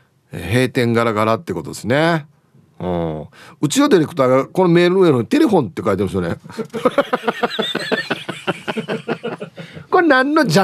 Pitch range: 130-175 Hz